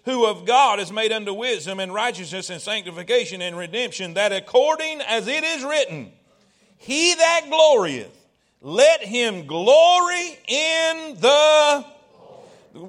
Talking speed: 135 wpm